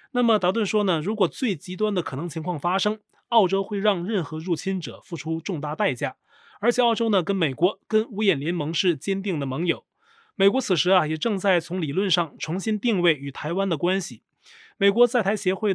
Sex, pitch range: male, 170-215 Hz